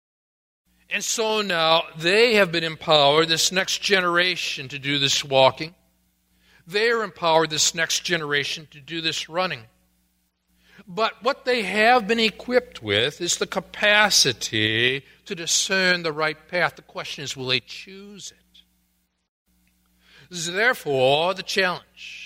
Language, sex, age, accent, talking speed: English, male, 50-69, American, 140 wpm